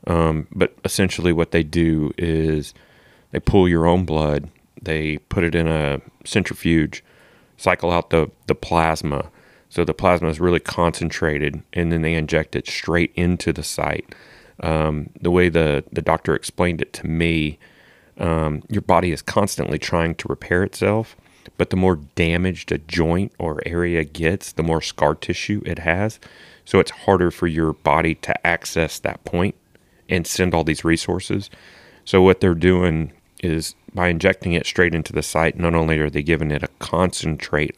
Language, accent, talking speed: English, American, 170 wpm